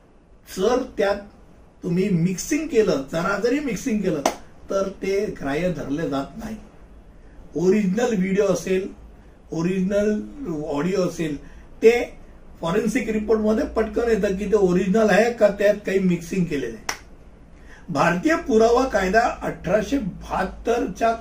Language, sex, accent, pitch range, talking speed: Hindi, male, native, 175-225 Hz, 90 wpm